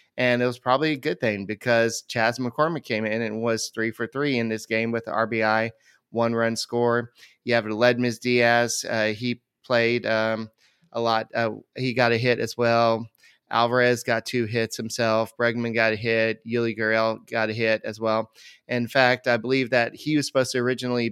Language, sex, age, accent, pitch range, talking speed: English, male, 30-49, American, 115-130 Hz, 195 wpm